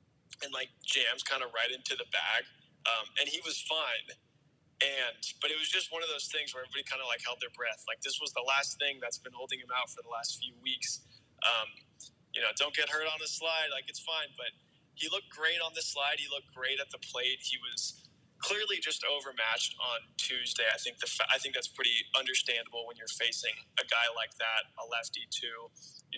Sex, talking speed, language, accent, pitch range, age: male, 225 wpm, English, American, 125-155 Hz, 20-39